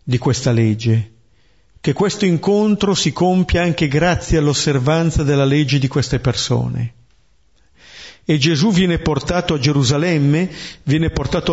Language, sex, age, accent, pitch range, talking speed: Italian, male, 50-69, native, 125-170 Hz, 125 wpm